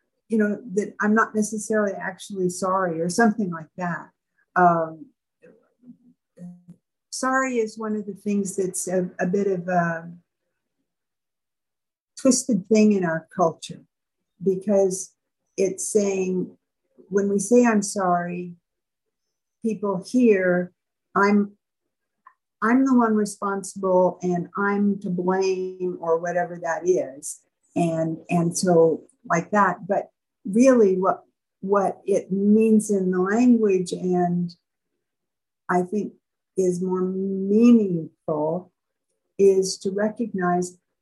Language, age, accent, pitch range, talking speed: English, 60-79, American, 180-210 Hz, 110 wpm